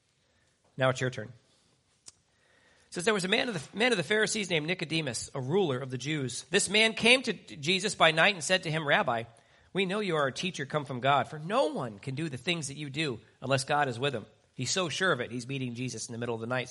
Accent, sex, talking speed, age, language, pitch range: American, male, 250 wpm, 40-59, English, 125-180 Hz